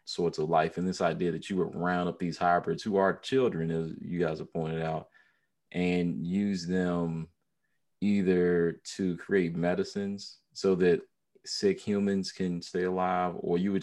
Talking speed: 170 wpm